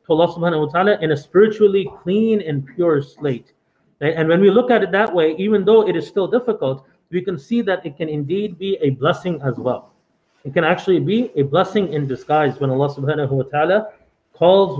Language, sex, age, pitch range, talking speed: English, male, 30-49, 140-185 Hz, 210 wpm